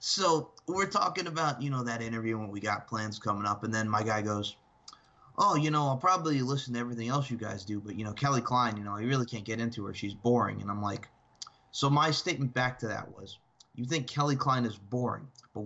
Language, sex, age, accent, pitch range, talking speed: English, male, 20-39, American, 110-140 Hz, 240 wpm